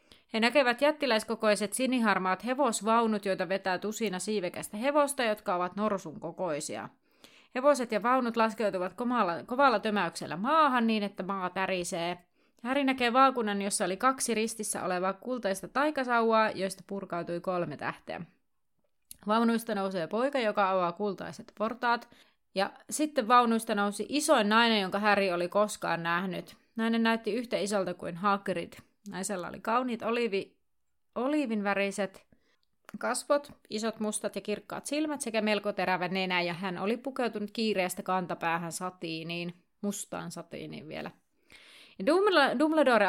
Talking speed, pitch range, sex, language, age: 125 wpm, 185-240 Hz, female, Finnish, 30-49